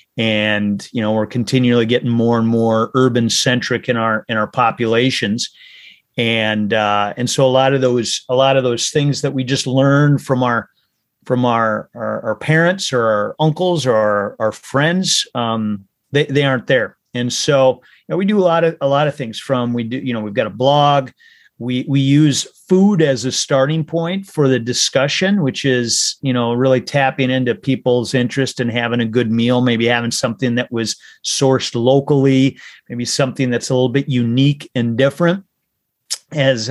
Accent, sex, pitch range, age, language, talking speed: American, male, 120-140 Hz, 40-59, English, 190 wpm